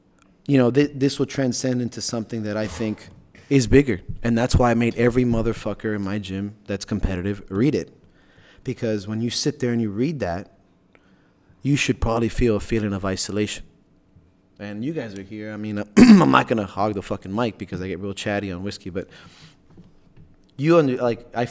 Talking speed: 200 wpm